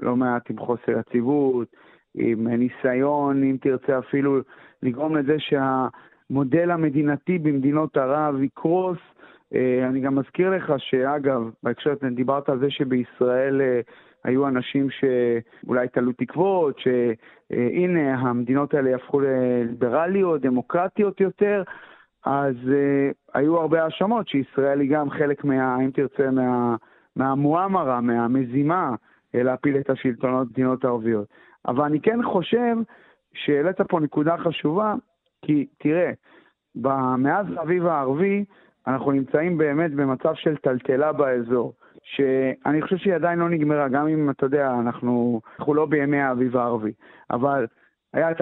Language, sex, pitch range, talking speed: Hebrew, male, 130-160 Hz, 120 wpm